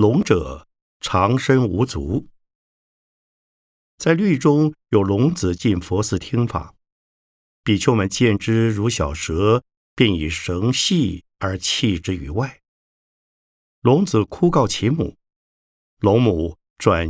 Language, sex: Chinese, male